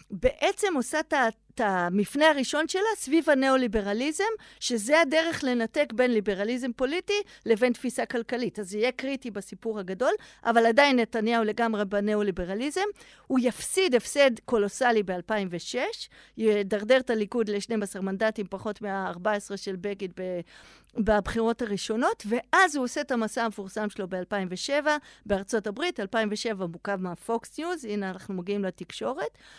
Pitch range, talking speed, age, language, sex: 205-270 Hz, 125 wpm, 50-69, Hebrew, female